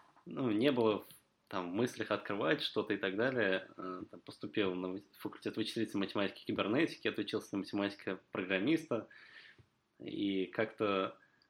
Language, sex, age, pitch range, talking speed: Russian, male, 20-39, 100-110 Hz, 120 wpm